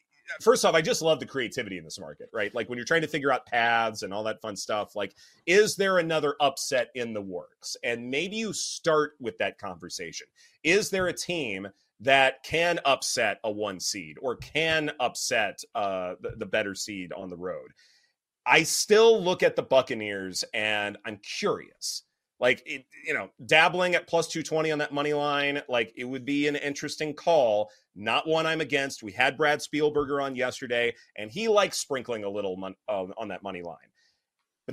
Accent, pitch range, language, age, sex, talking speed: American, 120-170 Hz, English, 30-49, male, 185 wpm